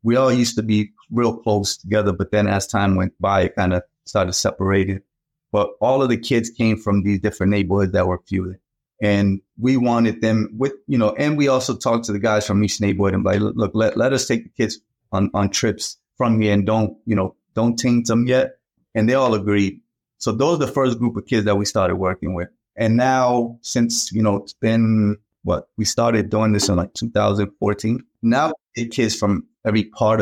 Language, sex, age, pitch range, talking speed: English, male, 30-49, 100-115 Hz, 215 wpm